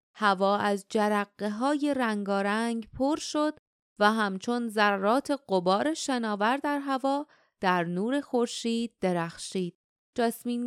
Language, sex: Persian, female